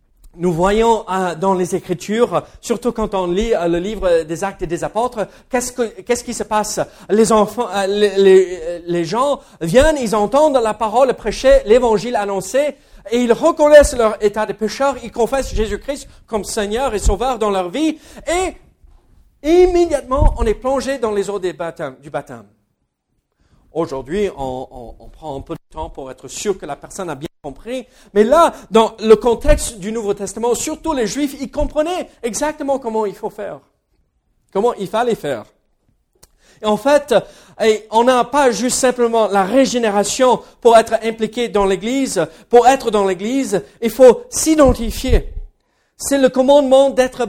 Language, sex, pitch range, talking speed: French, male, 200-265 Hz, 165 wpm